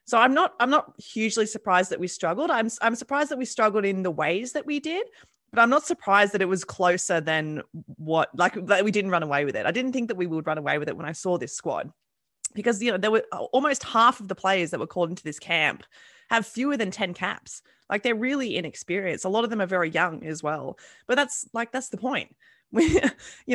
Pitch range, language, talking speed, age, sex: 165-220 Hz, English, 245 wpm, 20-39, female